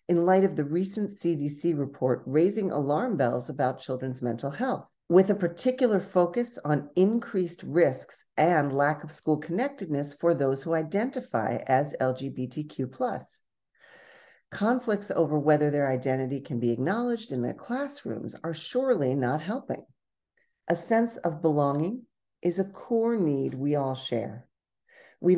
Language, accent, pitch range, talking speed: English, American, 140-195 Hz, 140 wpm